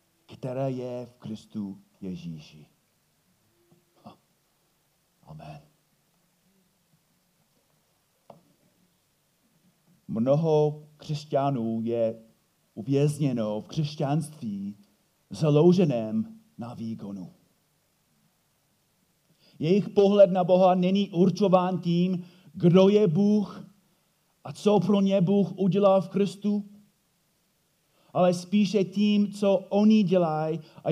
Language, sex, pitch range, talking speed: Czech, male, 140-185 Hz, 80 wpm